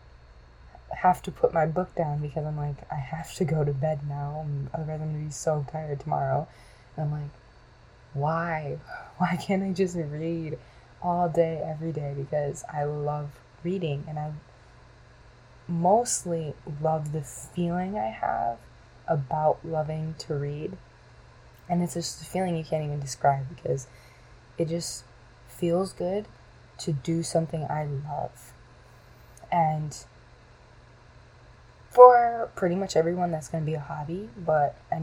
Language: English